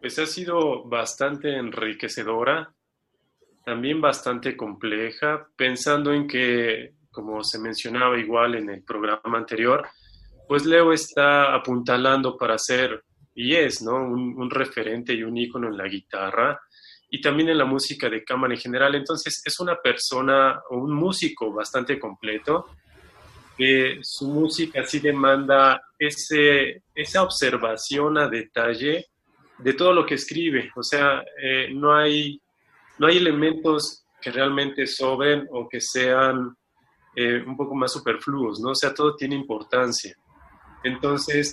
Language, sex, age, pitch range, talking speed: Spanish, male, 20-39, 120-145 Hz, 140 wpm